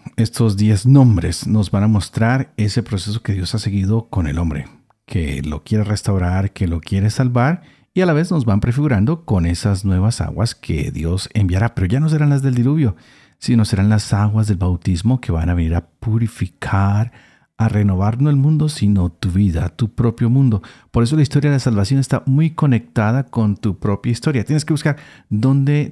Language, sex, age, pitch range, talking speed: Spanish, male, 50-69, 95-130 Hz, 200 wpm